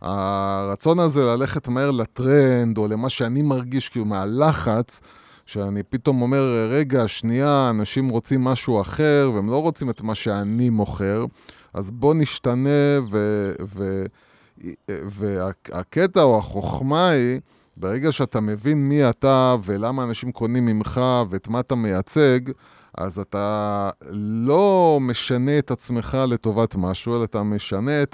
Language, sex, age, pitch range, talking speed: Hebrew, male, 20-39, 105-135 Hz, 130 wpm